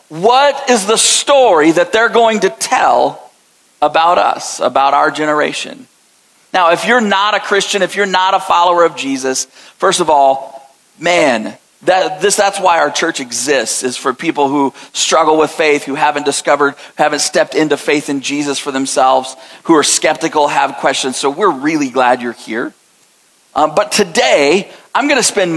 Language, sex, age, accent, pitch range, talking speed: English, male, 40-59, American, 150-195 Hz, 175 wpm